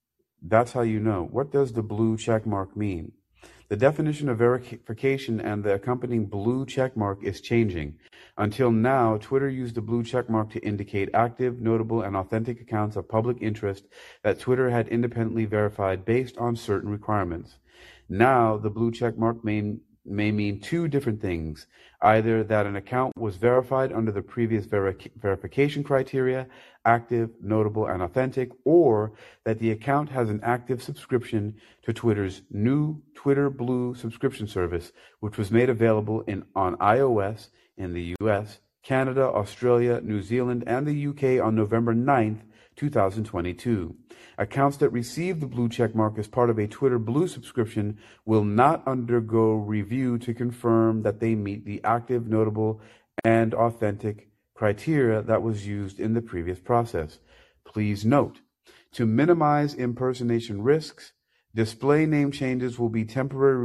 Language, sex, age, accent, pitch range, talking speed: English, male, 40-59, American, 105-125 Hz, 150 wpm